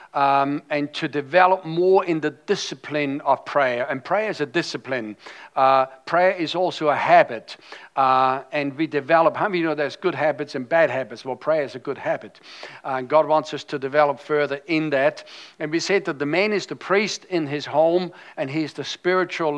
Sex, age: male, 60-79